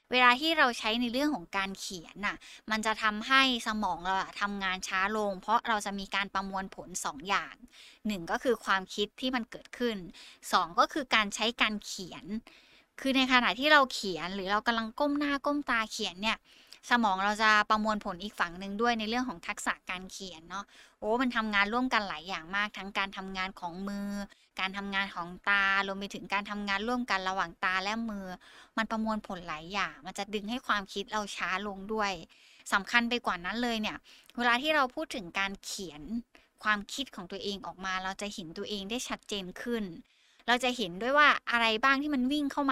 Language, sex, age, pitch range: Thai, female, 20-39, 195-245 Hz